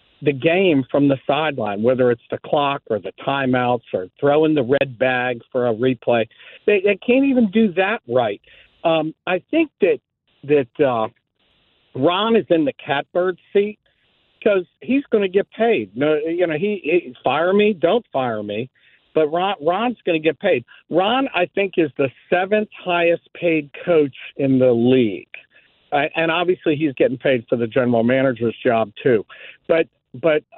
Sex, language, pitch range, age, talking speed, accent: male, English, 140-200 Hz, 50-69, 175 wpm, American